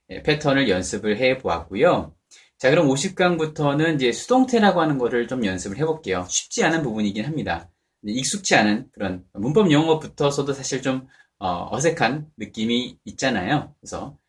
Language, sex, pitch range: Korean, male, 105-165 Hz